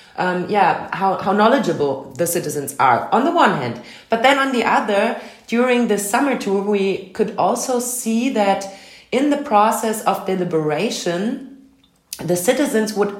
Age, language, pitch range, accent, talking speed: 30-49, German, 160-210 Hz, German, 155 wpm